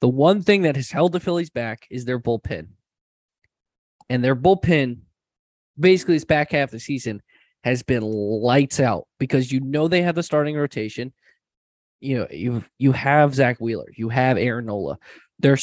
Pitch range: 115-155 Hz